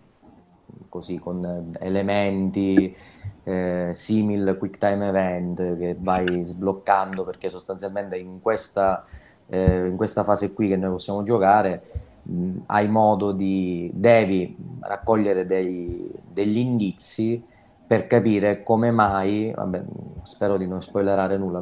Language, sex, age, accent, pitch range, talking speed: Italian, male, 20-39, native, 90-100 Hz, 120 wpm